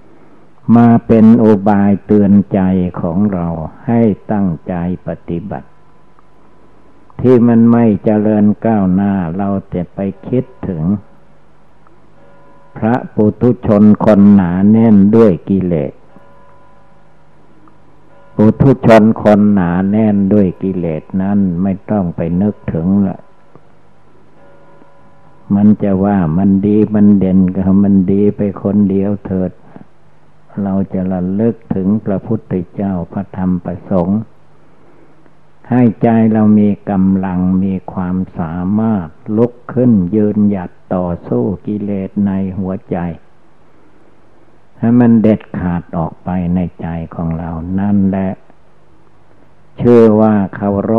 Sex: male